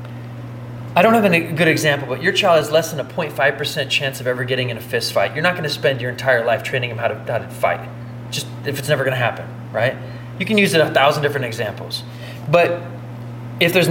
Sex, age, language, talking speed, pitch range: male, 20-39, English, 235 wpm, 120-140 Hz